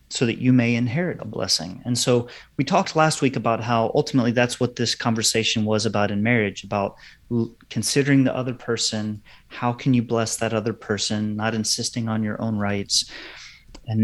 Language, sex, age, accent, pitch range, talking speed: English, male, 30-49, American, 110-130 Hz, 185 wpm